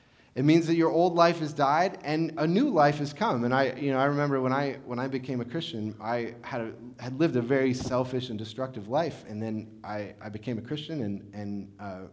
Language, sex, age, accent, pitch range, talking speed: English, male, 30-49, American, 115-185 Hz, 240 wpm